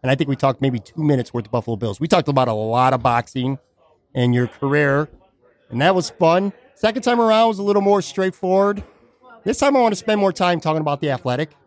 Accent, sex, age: American, male, 30-49